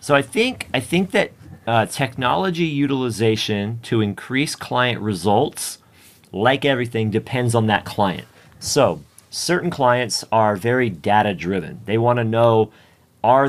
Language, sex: Croatian, male